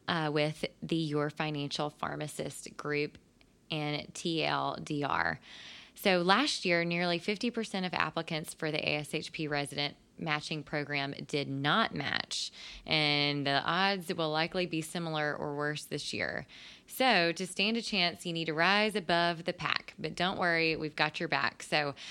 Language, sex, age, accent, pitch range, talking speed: English, female, 20-39, American, 150-180 Hz, 150 wpm